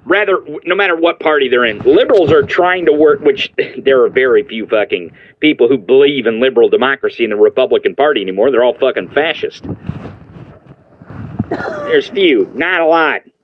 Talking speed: 170 wpm